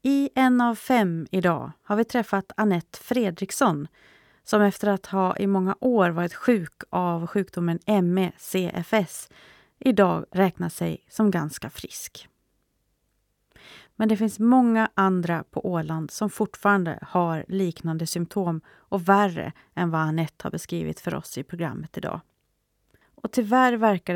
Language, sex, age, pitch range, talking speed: Swedish, female, 30-49, 170-205 Hz, 135 wpm